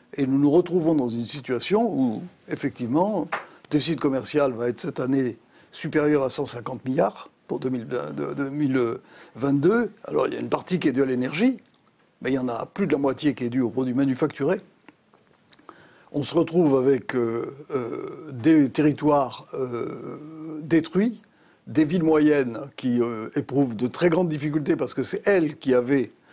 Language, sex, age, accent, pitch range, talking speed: French, male, 60-79, French, 130-165 Hz, 170 wpm